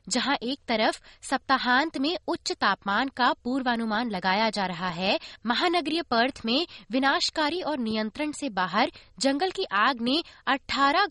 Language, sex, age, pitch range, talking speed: Hindi, female, 20-39, 205-300 Hz, 140 wpm